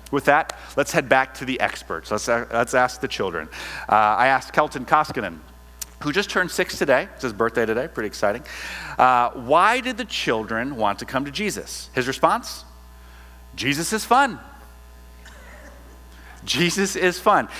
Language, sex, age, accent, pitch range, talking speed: English, male, 40-59, American, 105-160 Hz, 160 wpm